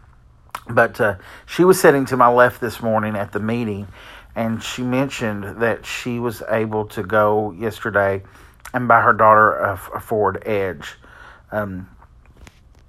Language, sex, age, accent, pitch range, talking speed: English, male, 40-59, American, 100-120 Hz, 150 wpm